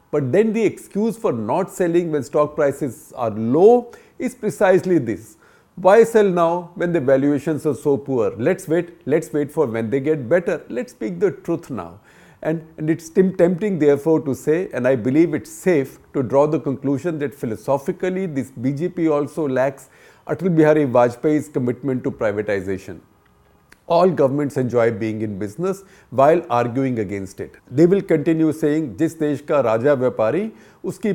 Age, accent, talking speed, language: 50-69, Indian, 165 wpm, English